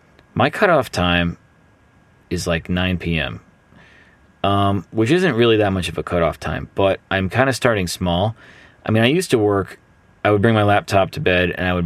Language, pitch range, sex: English, 85-105 Hz, male